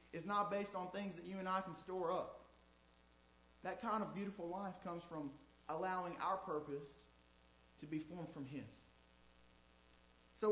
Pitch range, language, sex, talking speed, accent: 140-210 Hz, English, male, 160 wpm, American